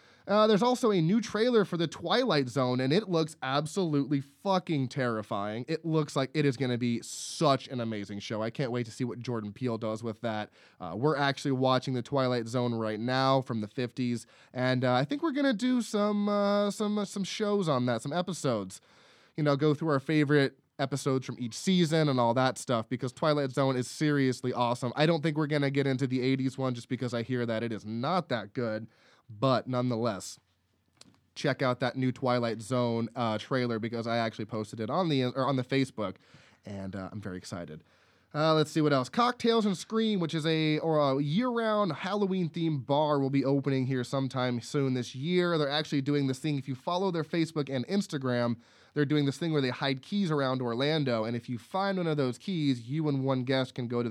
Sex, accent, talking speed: male, American, 215 wpm